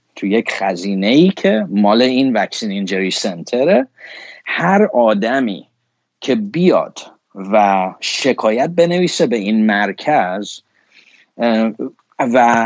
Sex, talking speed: male, 95 wpm